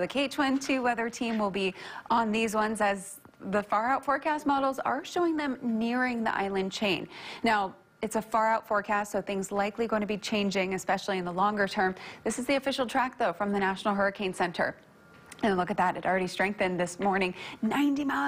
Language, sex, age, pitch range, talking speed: English, female, 30-49, 190-235 Hz, 200 wpm